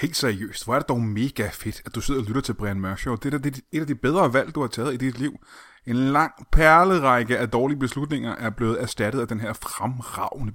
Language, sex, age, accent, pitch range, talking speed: Danish, male, 20-39, native, 105-140 Hz, 245 wpm